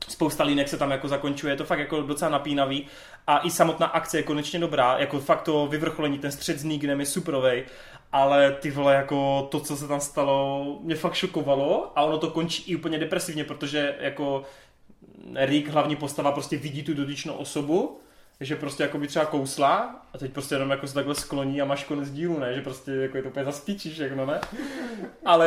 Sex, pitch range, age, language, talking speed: male, 140-180 Hz, 20-39, Czech, 205 wpm